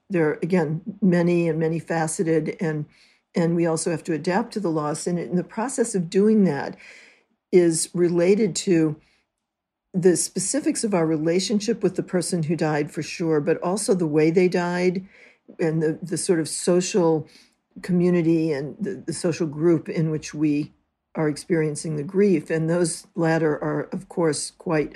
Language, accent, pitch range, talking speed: English, American, 160-190 Hz, 170 wpm